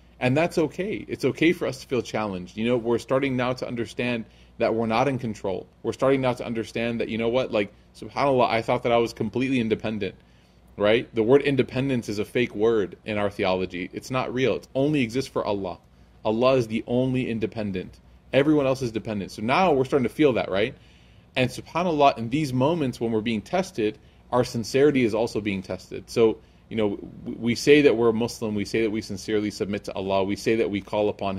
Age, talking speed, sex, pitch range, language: 20-39, 215 wpm, male, 100-120 Hz, English